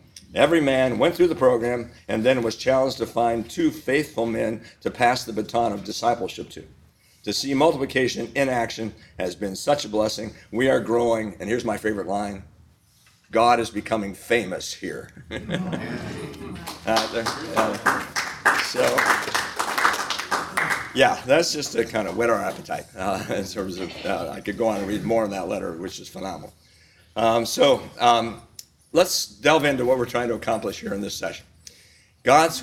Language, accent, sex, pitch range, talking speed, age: English, American, male, 100-130 Hz, 165 wpm, 50-69